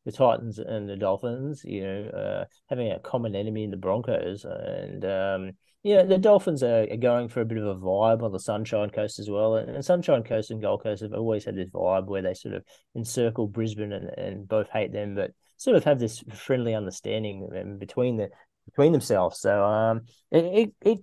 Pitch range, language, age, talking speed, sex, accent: 100-130 Hz, English, 30-49, 215 wpm, male, Australian